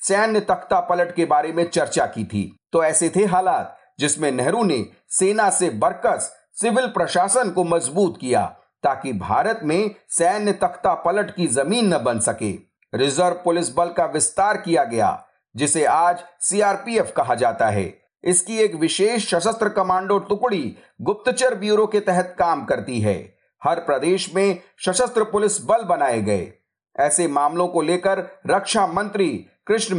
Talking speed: 150 wpm